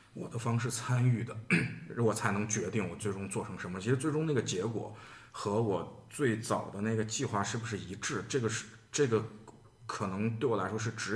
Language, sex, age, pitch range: Chinese, male, 20-39, 95-115 Hz